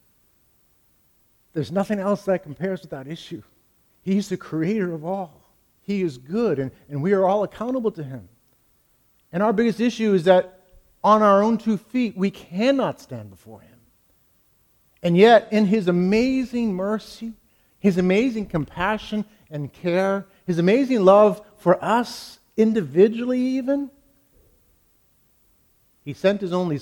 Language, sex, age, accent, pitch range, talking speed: English, male, 50-69, American, 135-205 Hz, 140 wpm